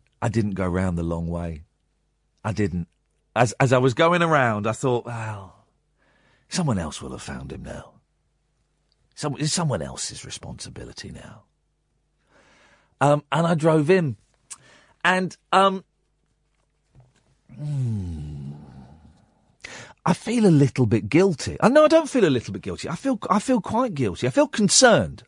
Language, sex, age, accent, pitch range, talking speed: English, male, 40-59, British, 115-185 Hz, 150 wpm